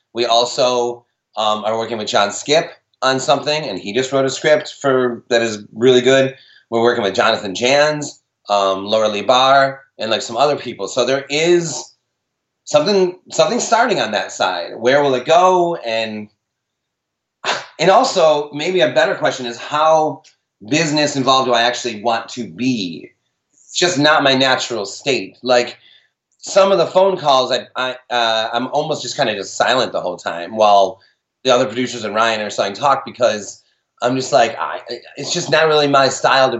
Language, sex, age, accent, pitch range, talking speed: English, male, 30-49, American, 115-150 Hz, 185 wpm